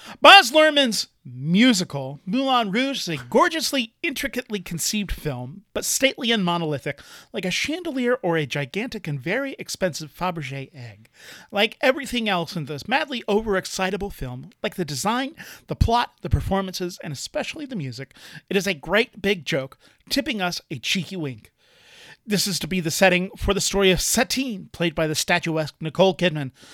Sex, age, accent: male, 40-59, American